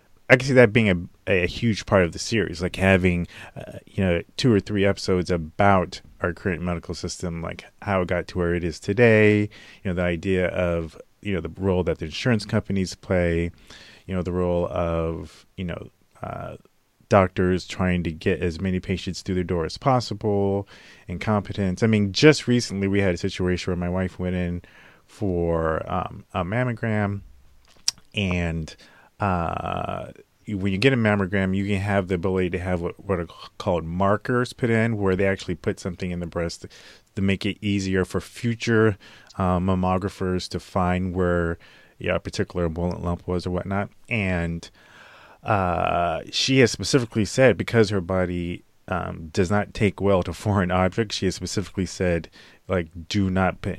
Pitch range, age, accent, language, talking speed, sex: 90-100 Hz, 30-49, American, English, 180 wpm, male